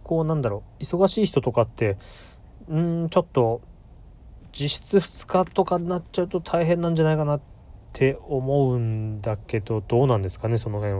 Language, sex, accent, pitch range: Japanese, male, native, 90-135 Hz